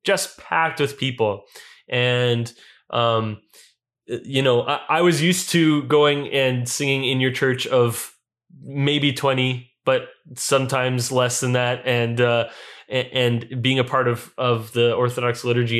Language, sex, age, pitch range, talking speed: English, male, 20-39, 120-135 Hz, 145 wpm